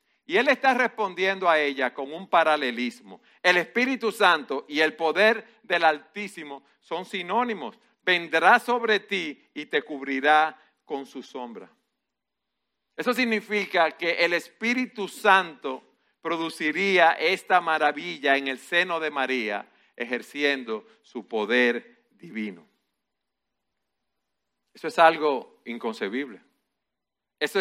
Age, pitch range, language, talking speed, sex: 50-69, 120-195 Hz, Spanish, 110 wpm, male